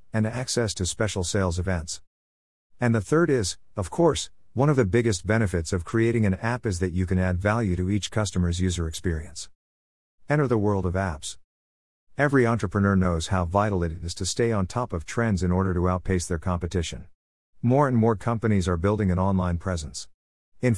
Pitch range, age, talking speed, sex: 90-110 Hz, 50-69, 190 wpm, male